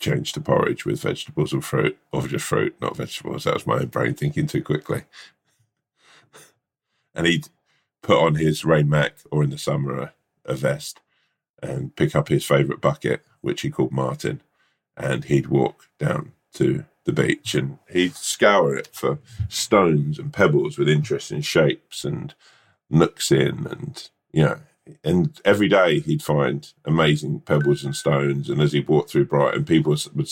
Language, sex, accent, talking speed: English, male, British, 165 wpm